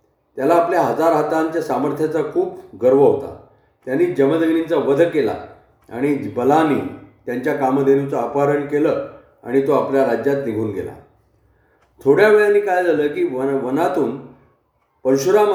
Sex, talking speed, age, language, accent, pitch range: male, 95 wpm, 40-59, Marathi, native, 135-180 Hz